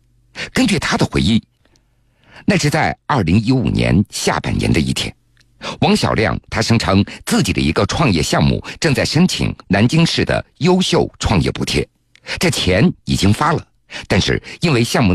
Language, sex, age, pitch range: Chinese, male, 50-69, 100-130 Hz